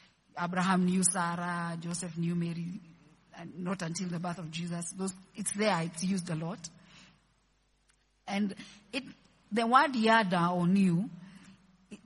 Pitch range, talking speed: 170-205 Hz, 135 wpm